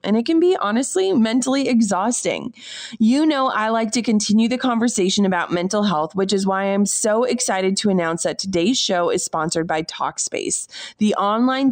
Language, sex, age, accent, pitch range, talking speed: English, female, 30-49, American, 195-250 Hz, 180 wpm